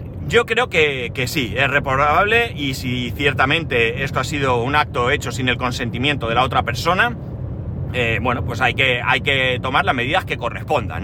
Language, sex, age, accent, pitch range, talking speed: Spanish, male, 30-49, Spanish, 120-150 Hz, 185 wpm